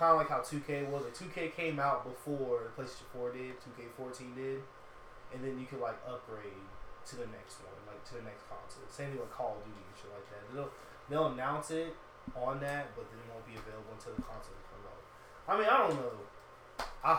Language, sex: English, male